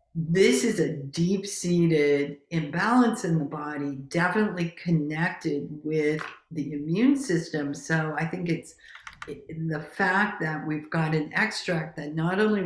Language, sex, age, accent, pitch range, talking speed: English, female, 50-69, American, 150-180 Hz, 140 wpm